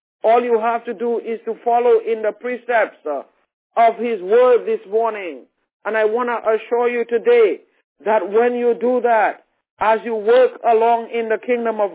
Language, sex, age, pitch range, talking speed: English, male, 50-69, 220-250 Hz, 185 wpm